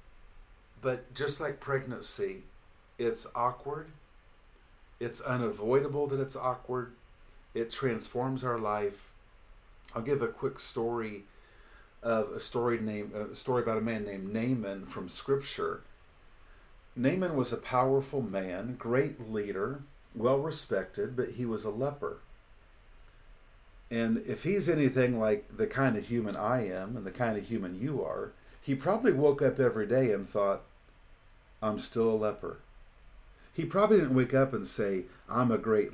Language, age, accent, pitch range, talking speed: English, 50-69, American, 105-135 Hz, 145 wpm